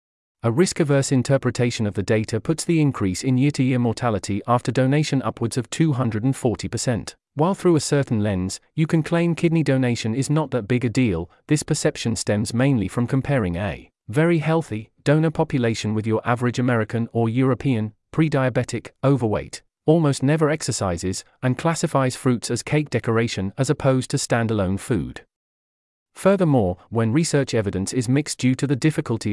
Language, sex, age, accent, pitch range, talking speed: English, male, 40-59, British, 110-140 Hz, 155 wpm